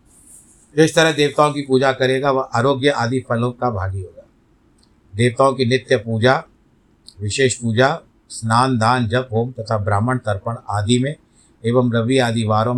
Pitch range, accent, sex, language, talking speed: 110-135 Hz, native, male, Hindi, 155 wpm